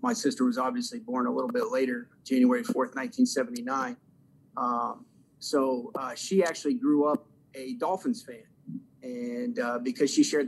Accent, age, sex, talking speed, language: American, 40-59, male, 155 wpm, English